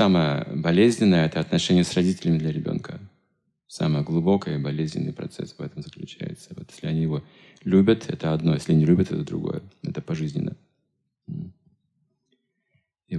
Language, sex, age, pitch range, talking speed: Russian, male, 30-49, 80-105 Hz, 145 wpm